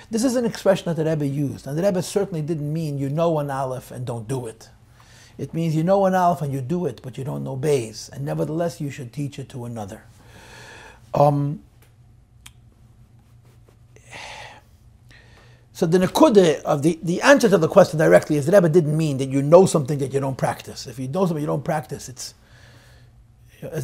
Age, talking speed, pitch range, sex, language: 50-69, 200 wpm, 115-160 Hz, male, English